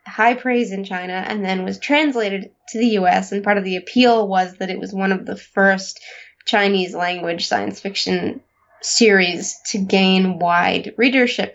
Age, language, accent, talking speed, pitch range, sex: 20-39, English, American, 165 wpm, 195-235 Hz, female